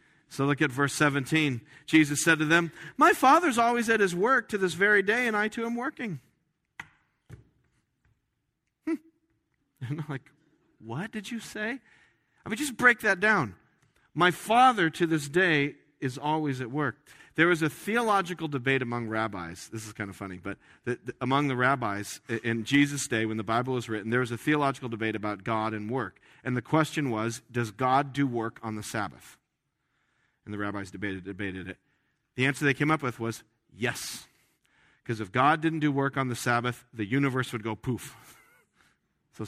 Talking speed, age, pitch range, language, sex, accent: 185 wpm, 40-59, 120-165 Hz, English, male, American